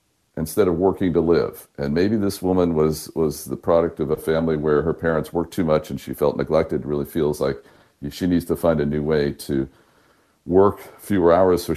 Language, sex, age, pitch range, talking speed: English, male, 50-69, 75-100 Hz, 210 wpm